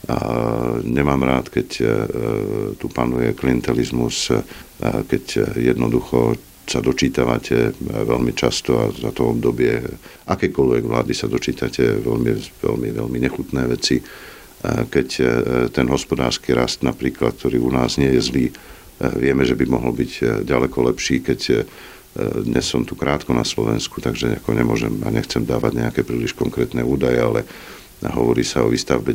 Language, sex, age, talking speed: Slovak, male, 50-69, 130 wpm